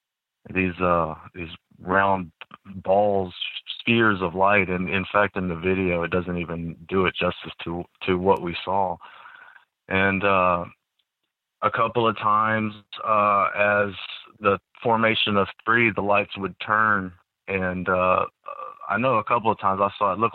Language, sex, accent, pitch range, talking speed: English, male, American, 90-105 Hz, 155 wpm